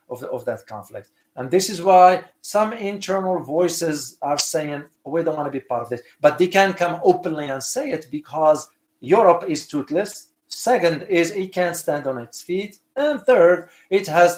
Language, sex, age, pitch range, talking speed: English, male, 50-69, 125-165 Hz, 190 wpm